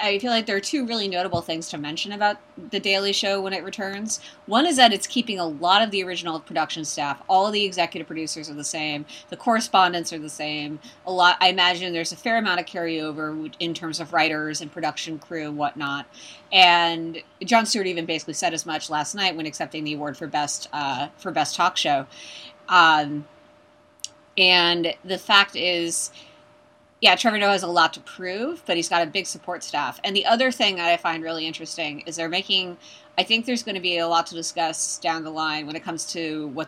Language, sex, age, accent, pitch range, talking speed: English, female, 30-49, American, 160-190 Hz, 220 wpm